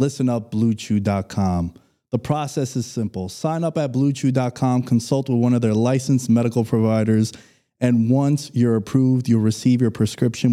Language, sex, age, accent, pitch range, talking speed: English, male, 20-39, American, 115-135 Hz, 155 wpm